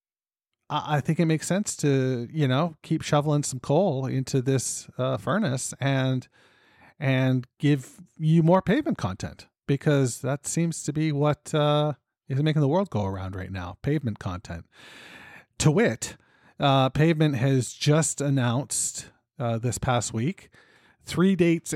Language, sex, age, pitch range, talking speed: English, male, 40-59, 115-150 Hz, 145 wpm